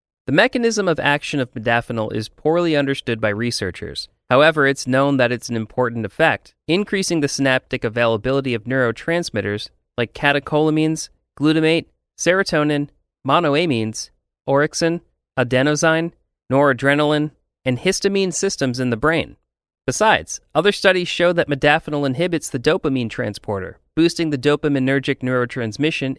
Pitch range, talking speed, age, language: 125-155 Hz, 120 wpm, 30-49, English